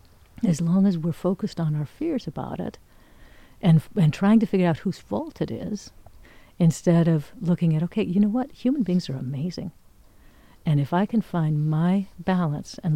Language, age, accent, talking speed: English, 50-69, American, 185 wpm